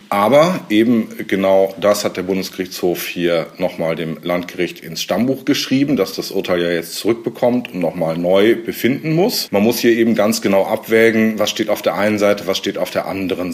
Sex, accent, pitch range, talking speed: male, German, 95-125 Hz, 190 wpm